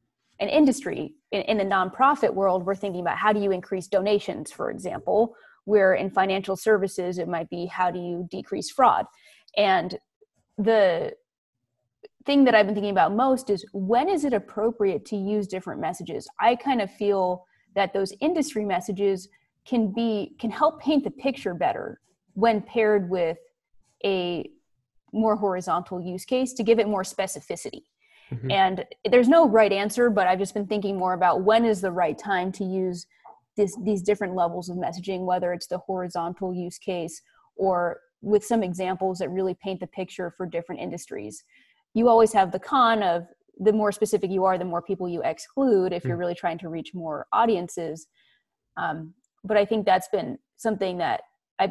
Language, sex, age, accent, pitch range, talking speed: English, female, 20-39, American, 180-220 Hz, 175 wpm